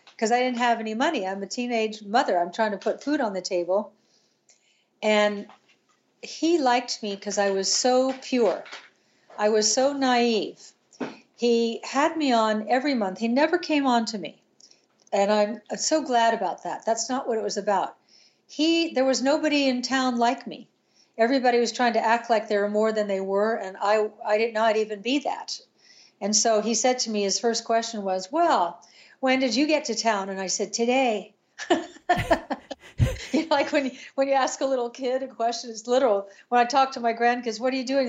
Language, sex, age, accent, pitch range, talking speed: English, female, 50-69, American, 210-265 Hz, 205 wpm